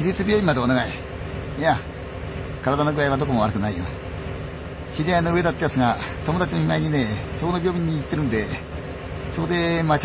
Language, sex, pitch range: Chinese, male, 110-150 Hz